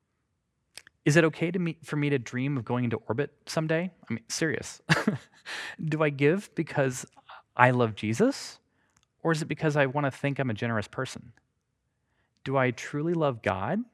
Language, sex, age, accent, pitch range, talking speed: English, male, 30-49, American, 115-160 Hz, 170 wpm